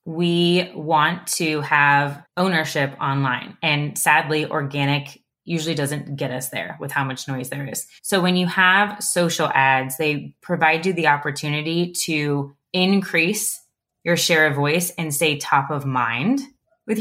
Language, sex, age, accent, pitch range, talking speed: English, female, 20-39, American, 145-180 Hz, 150 wpm